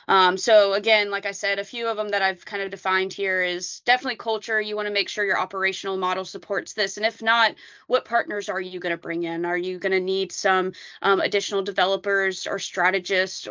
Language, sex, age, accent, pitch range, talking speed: English, female, 20-39, American, 185-210 Hz, 225 wpm